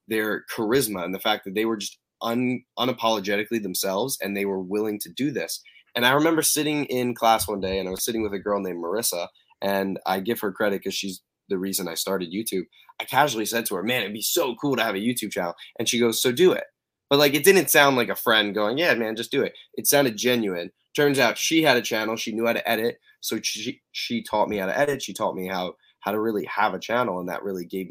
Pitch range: 100-125 Hz